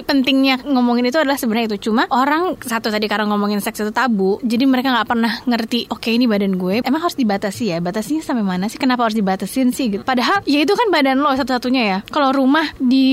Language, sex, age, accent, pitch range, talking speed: Indonesian, female, 20-39, native, 230-290 Hz, 225 wpm